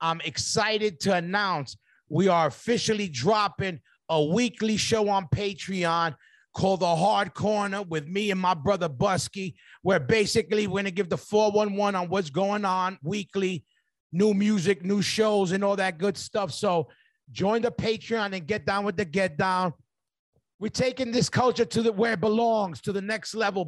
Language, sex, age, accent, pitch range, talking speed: English, male, 30-49, American, 170-205 Hz, 170 wpm